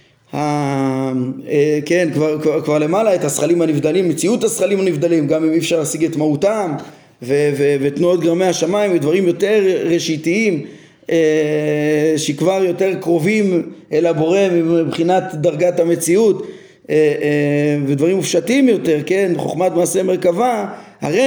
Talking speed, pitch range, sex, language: 130 wpm, 160-205 Hz, male, Hebrew